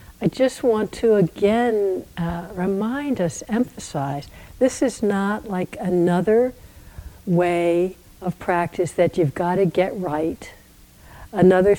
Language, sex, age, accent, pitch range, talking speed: English, female, 60-79, American, 170-220 Hz, 115 wpm